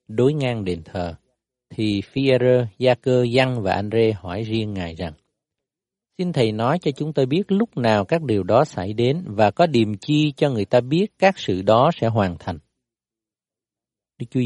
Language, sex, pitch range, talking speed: Vietnamese, male, 100-135 Hz, 185 wpm